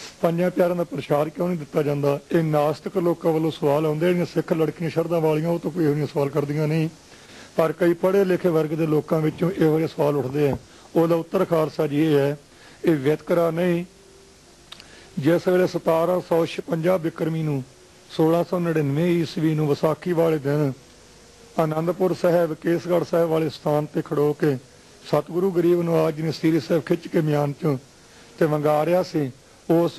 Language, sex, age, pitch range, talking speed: Punjabi, male, 50-69, 145-170 Hz, 165 wpm